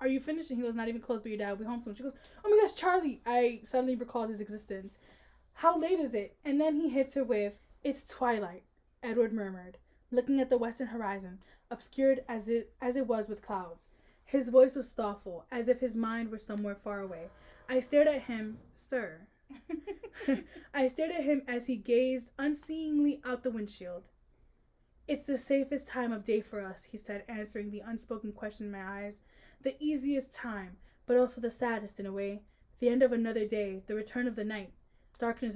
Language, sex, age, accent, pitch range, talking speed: English, female, 10-29, American, 210-265 Hz, 200 wpm